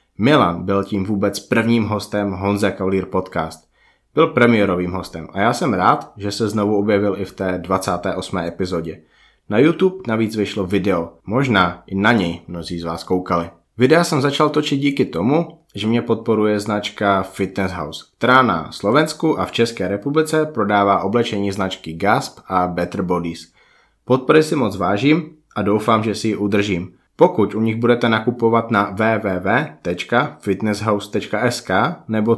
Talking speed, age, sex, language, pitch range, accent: 150 wpm, 20-39, male, Czech, 95-115 Hz, native